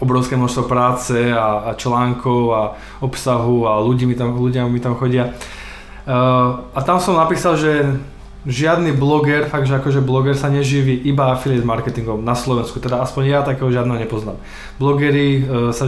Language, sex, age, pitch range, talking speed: Slovak, male, 20-39, 125-150 Hz, 165 wpm